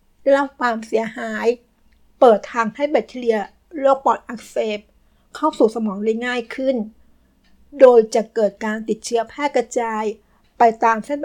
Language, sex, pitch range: Thai, female, 220-255 Hz